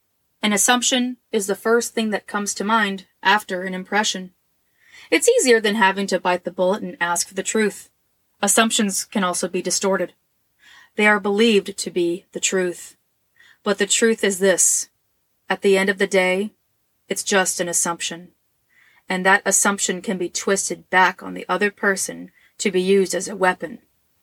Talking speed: 175 wpm